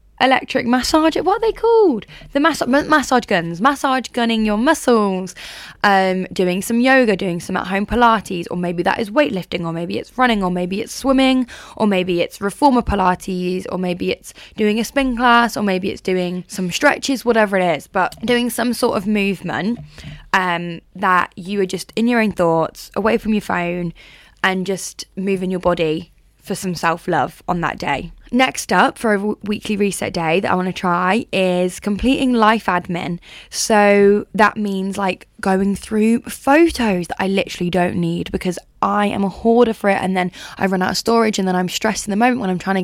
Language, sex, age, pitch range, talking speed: English, female, 10-29, 180-235 Hz, 195 wpm